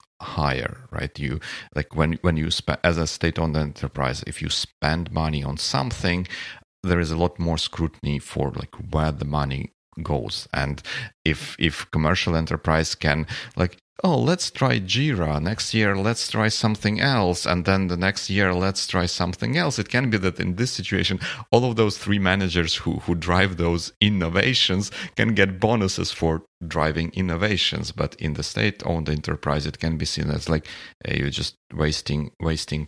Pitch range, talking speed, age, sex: 80-105 Hz, 175 wpm, 40-59, male